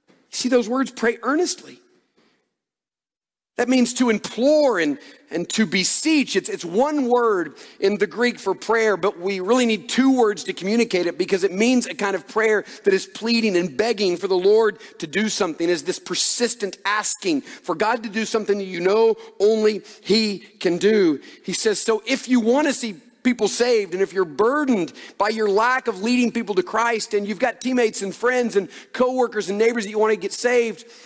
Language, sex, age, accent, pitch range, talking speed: English, male, 40-59, American, 185-245 Hz, 195 wpm